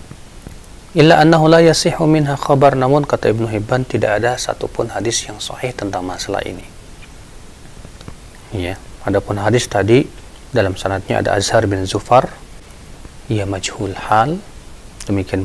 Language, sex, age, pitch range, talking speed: Indonesian, male, 40-59, 105-150 Hz, 120 wpm